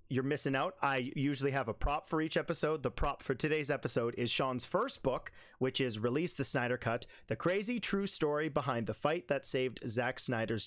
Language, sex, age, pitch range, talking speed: English, male, 30-49, 120-155 Hz, 210 wpm